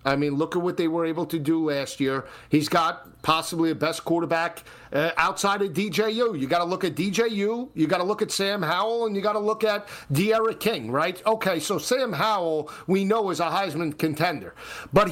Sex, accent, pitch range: male, American, 165-225 Hz